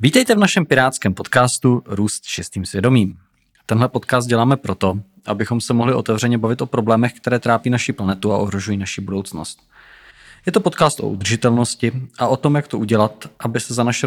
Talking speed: 180 wpm